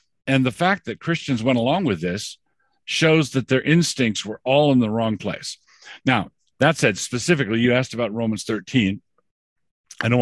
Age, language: 50-69, English